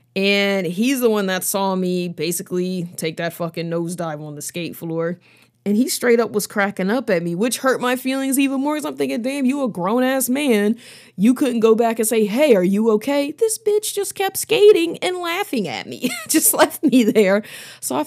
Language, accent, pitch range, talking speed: English, American, 180-245 Hz, 215 wpm